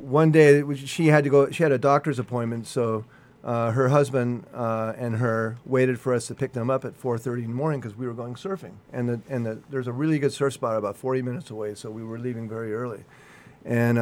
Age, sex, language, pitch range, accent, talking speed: 40-59, male, English, 115-135 Hz, American, 245 wpm